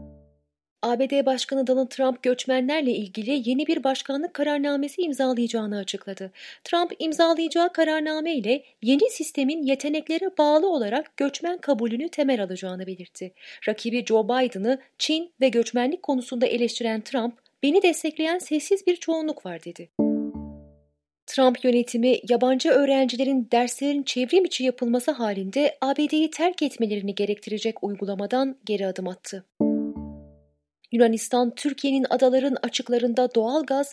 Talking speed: 115 wpm